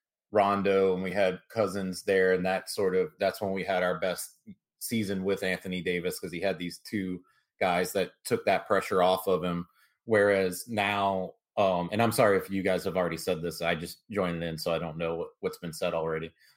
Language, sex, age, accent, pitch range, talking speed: English, male, 30-49, American, 95-110 Hz, 210 wpm